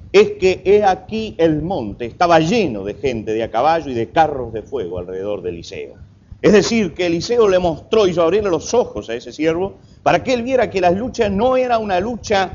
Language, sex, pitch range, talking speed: Spanish, male, 160-225 Hz, 215 wpm